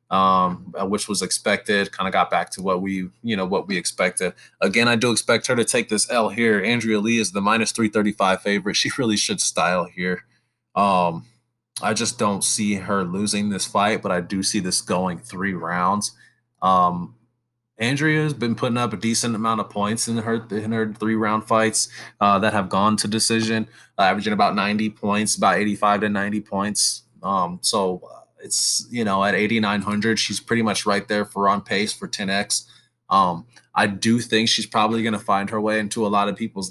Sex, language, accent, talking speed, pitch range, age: male, English, American, 200 wpm, 95-110 Hz, 20-39